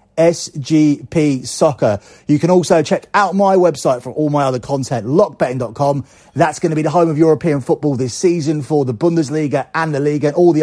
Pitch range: 135-175 Hz